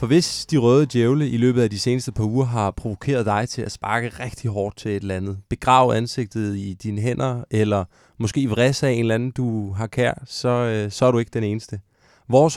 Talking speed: 225 wpm